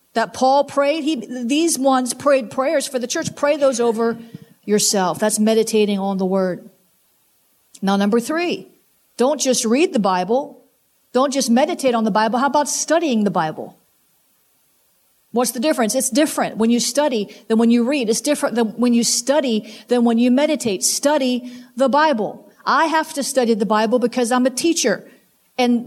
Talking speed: 175 wpm